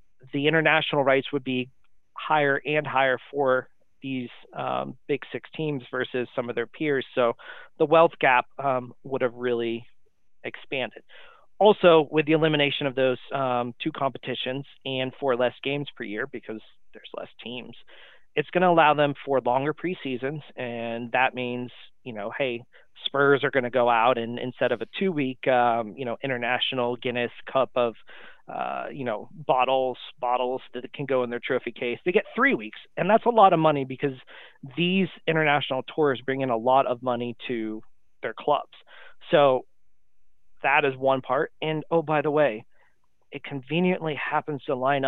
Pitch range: 125-150 Hz